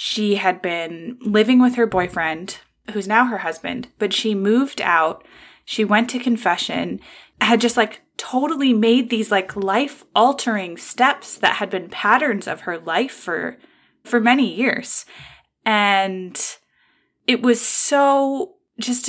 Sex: female